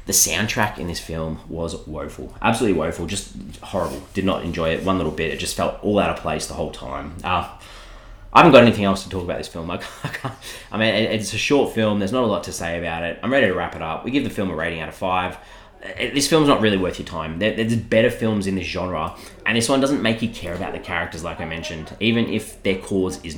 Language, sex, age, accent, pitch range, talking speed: English, male, 20-39, Australian, 85-100 Hz, 255 wpm